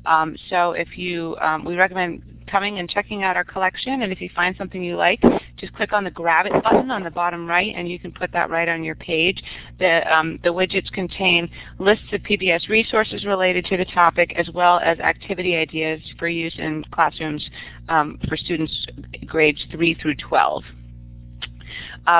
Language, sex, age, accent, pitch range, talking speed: English, female, 30-49, American, 155-180 Hz, 185 wpm